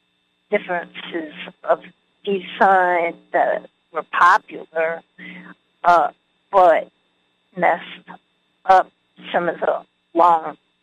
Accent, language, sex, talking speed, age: American, English, female, 80 wpm, 50-69